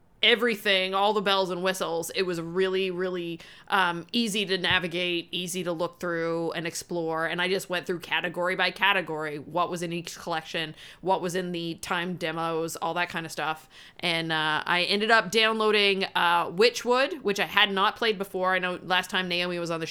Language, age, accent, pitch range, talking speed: English, 20-39, American, 170-205 Hz, 200 wpm